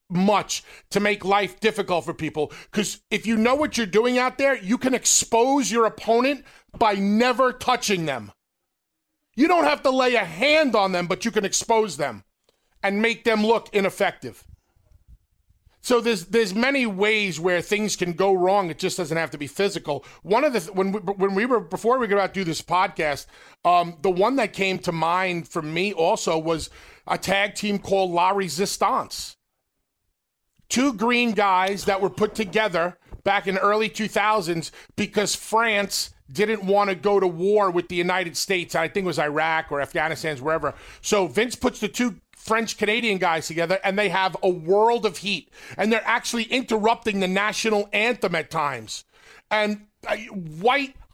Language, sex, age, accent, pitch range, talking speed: English, male, 40-59, American, 170-220 Hz, 180 wpm